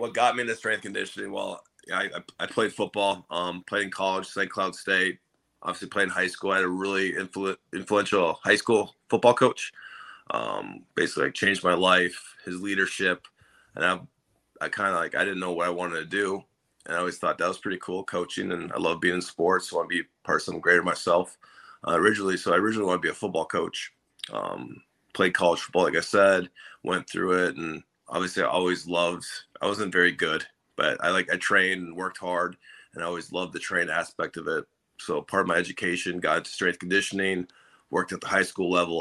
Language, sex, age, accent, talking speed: English, male, 30-49, American, 225 wpm